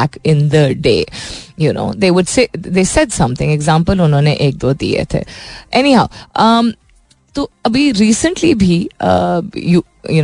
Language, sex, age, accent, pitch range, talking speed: Hindi, female, 20-39, native, 145-215 Hz, 160 wpm